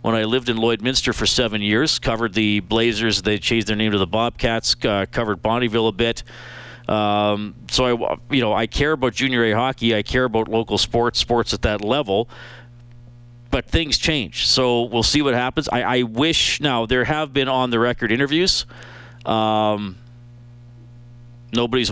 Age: 40-59